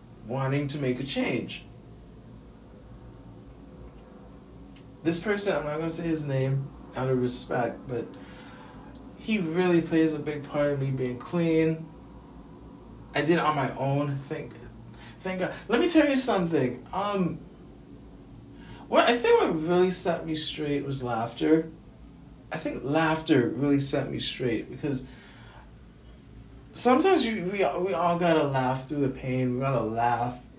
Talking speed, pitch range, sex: 145 wpm, 120-165 Hz, male